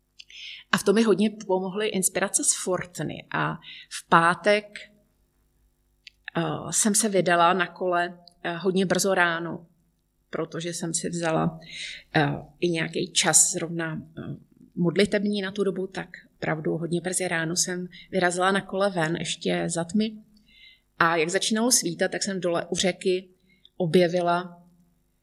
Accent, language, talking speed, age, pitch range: native, Czech, 130 wpm, 30-49, 170-200 Hz